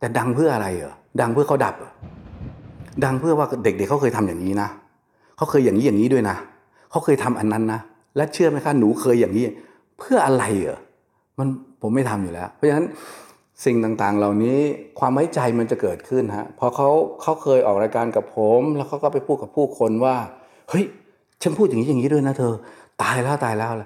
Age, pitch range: 60-79, 105-135 Hz